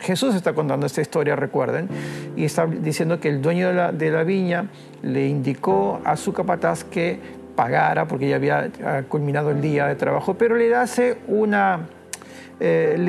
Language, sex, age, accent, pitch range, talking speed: Spanish, male, 40-59, Argentinian, 155-210 Hz, 165 wpm